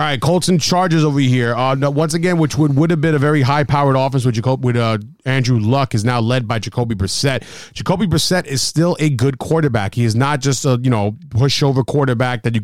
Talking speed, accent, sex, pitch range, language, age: 235 wpm, American, male, 115-145 Hz, English, 30-49